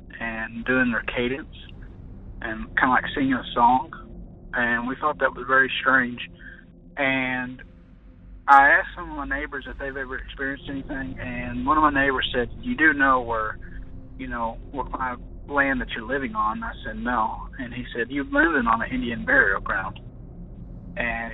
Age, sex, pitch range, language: 30-49, male, 115-135 Hz, English